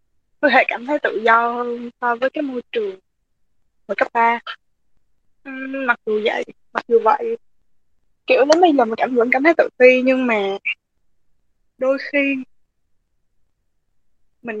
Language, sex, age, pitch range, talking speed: Vietnamese, female, 20-39, 215-270 Hz, 150 wpm